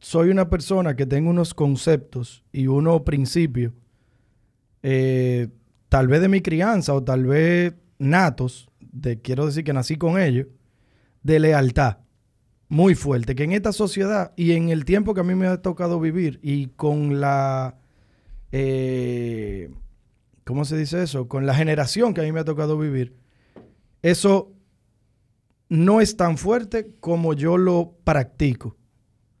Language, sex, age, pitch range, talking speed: Spanish, male, 30-49, 125-180 Hz, 150 wpm